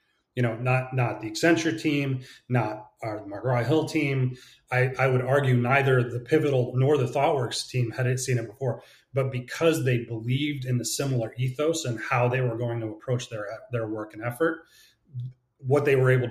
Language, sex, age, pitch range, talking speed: English, male, 30-49, 115-130 Hz, 185 wpm